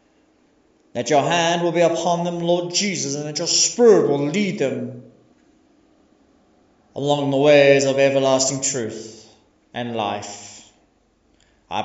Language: English